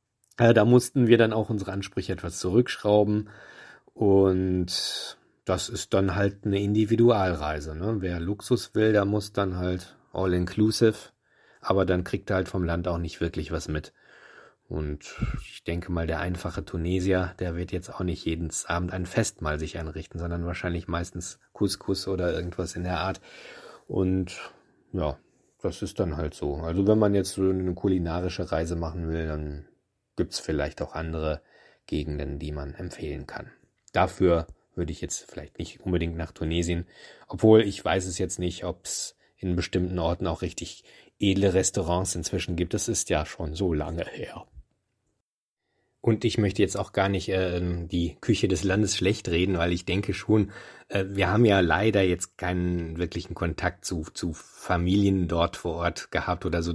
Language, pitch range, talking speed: German, 85-100 Hz, 170 wpm